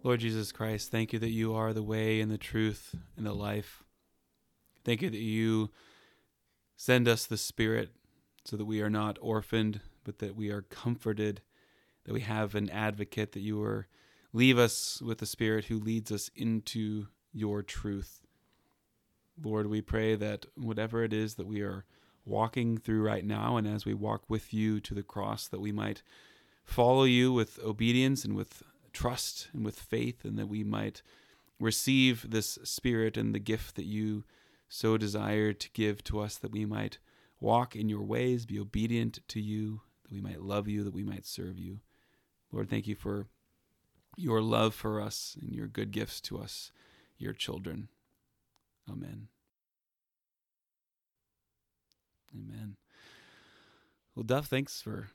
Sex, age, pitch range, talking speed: male, 30-49, 105-115 Hz, 165 wpm